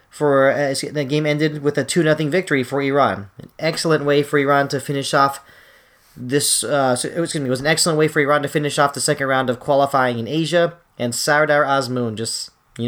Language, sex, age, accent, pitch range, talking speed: English, male, 30-49, American, 130-155 Hz, 215 wpm